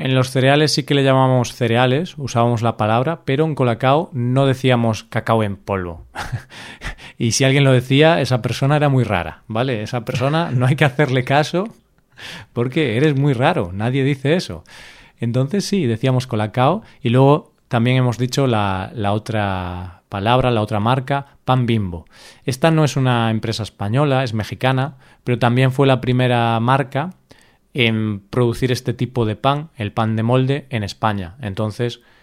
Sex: male